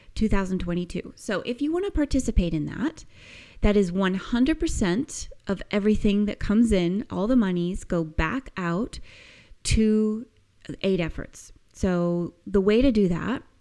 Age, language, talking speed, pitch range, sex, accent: 30-49, English, 140 wpm, 180-225 Hz, female, American